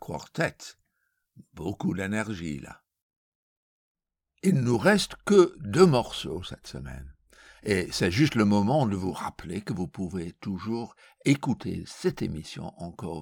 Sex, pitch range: male, 80-130 Hz